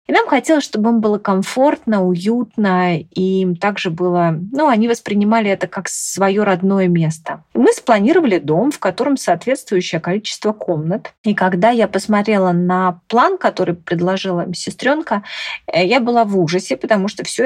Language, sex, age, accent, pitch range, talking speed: Russian, female, 30-49, native, 180-235 Hz, 150 wpm